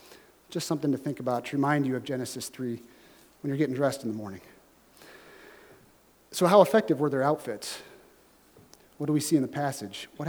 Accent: American